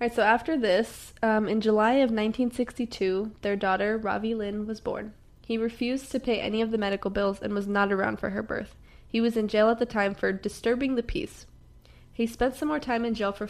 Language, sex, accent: English, female, American